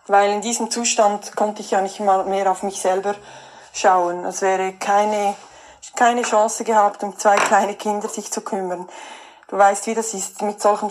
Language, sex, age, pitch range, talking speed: German, female, 20-39, 205-245 Hz, 185 wpm